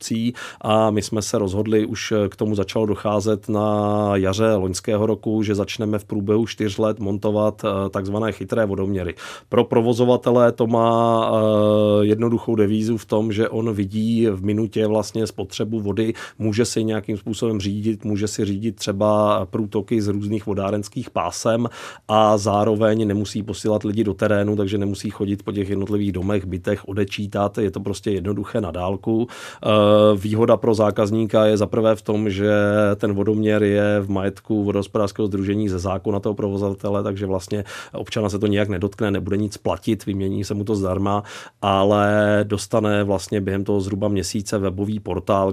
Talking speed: 160 wpm